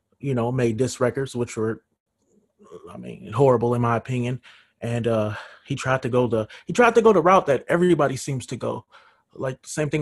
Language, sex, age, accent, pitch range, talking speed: English, male, 20-39, American, 115-145 Hz, 210 wpm